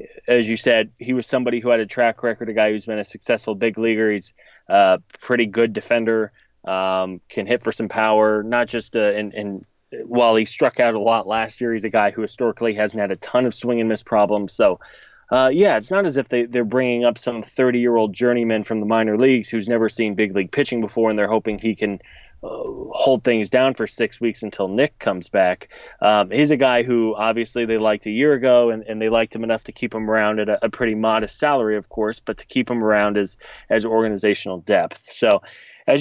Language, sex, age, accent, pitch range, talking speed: English, male, 20-39, American, 110-120 Hz, 230 wpm